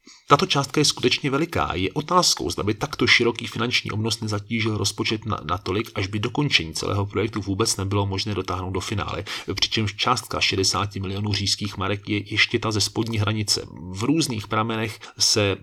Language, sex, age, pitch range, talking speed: Czech, male, 30-49, 100-120 Hz, 170 wpm